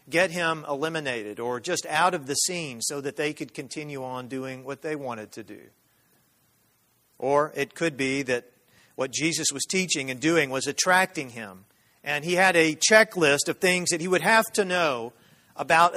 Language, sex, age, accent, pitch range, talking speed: English, male, 40-59, American, 135-180 Hz, 185 wpm